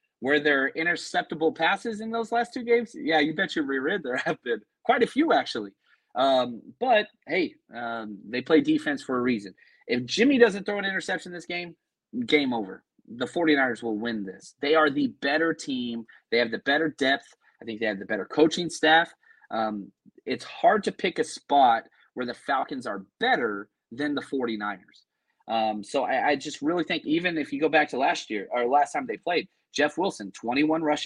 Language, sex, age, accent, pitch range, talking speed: English, male, 30-49, American, 120-175 Hz, 200 wpm